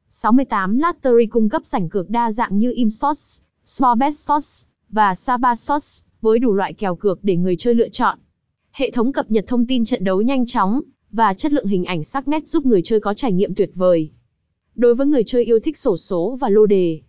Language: Vietnamese